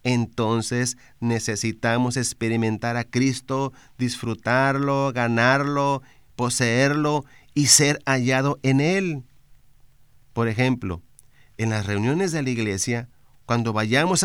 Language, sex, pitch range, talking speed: Spanish, male, 115-140 Hz, 95 wpm